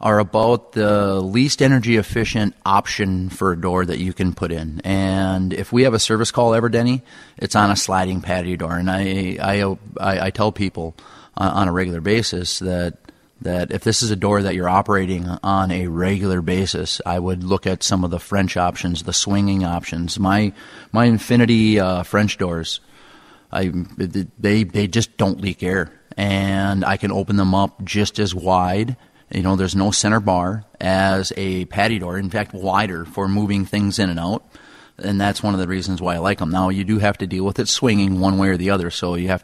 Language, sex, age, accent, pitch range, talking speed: English, male, 30-49, American, 90-105 Hz, 205 wpm